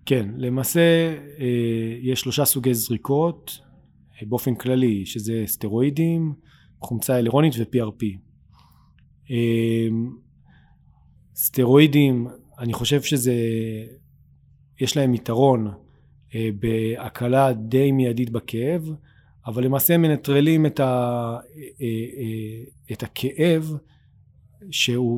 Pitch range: 115-140 Hz